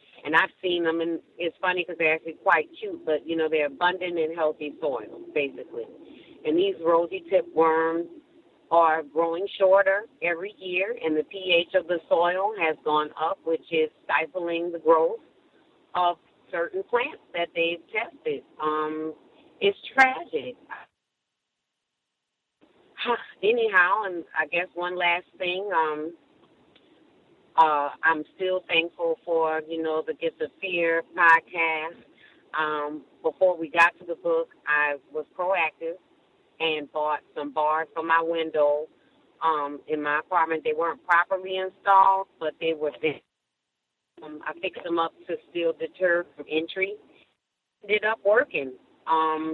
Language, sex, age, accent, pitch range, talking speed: English, female, 40-59, American, 160-195 Hz, 140 wpm